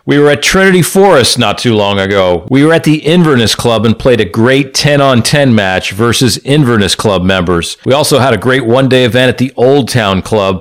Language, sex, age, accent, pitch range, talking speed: English, male, 40-59, American, 100-130 Hz, 210 wpm